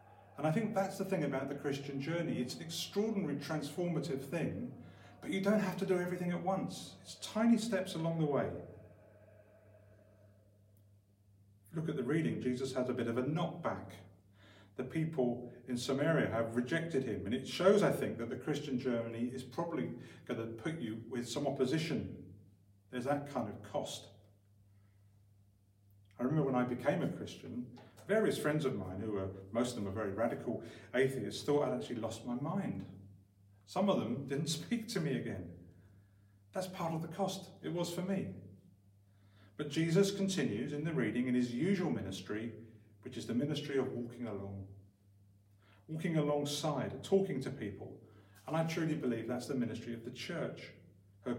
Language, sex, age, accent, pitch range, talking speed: English, male, 40-59, British, 100-150 Hz, 170 wpm